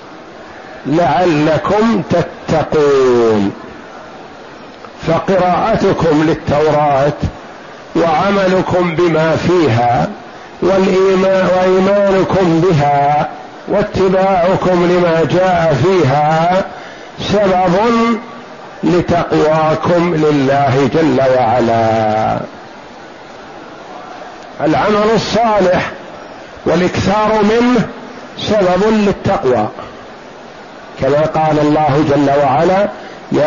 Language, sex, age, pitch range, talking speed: Arabic, male, 50-69, 150-195 Hz, 55 wpm